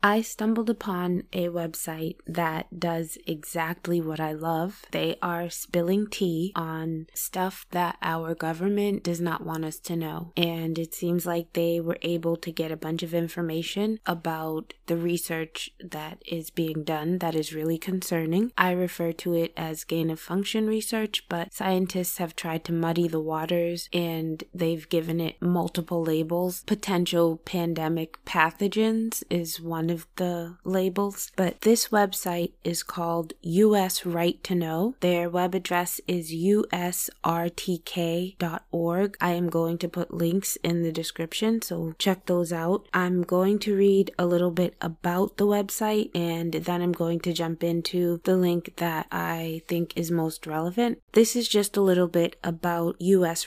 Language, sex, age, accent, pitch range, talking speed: English, female, 20-39, American, 165-185 Hz, 155 wpm